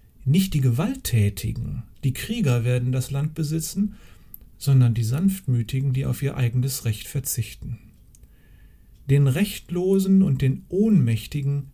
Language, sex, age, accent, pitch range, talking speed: German, male, 40-59, German, 110-165 Hz, 120 wpm